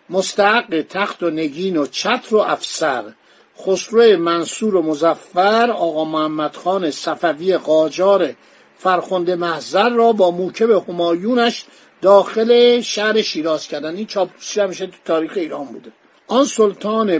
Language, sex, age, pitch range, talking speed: Persian, male, 50-69, 170-220 Hz, 125 wpm